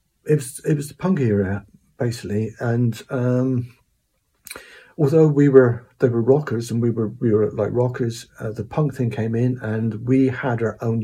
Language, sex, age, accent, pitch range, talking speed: English, male, 50-69, British, 105-130 Hz, 185 wpm